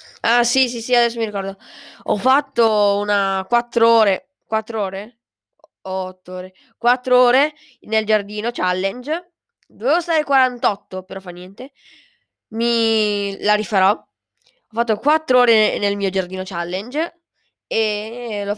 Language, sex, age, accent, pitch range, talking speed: Italian, female, 10-29, native, 190-245 Hz, 130 wpm